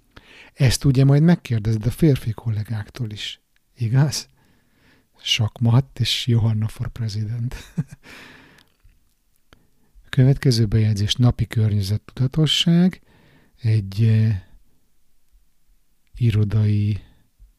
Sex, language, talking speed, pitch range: male, Hungarian, 70 wpm, 105-130 Hz